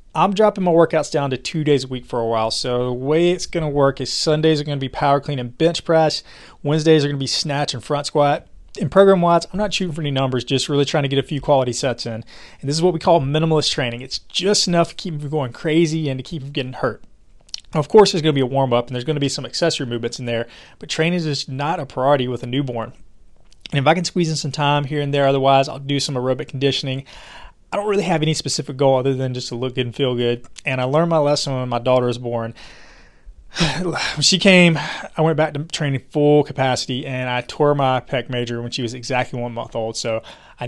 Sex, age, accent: male, 30-49, American